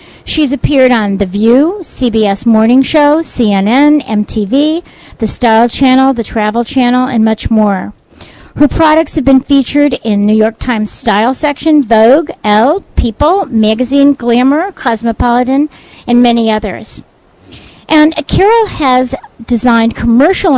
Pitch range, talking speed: 225-280 Hz, 130 wpm